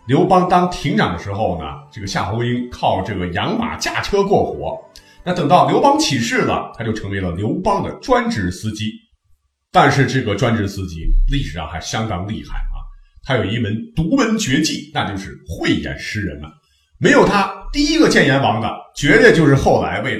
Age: 50-69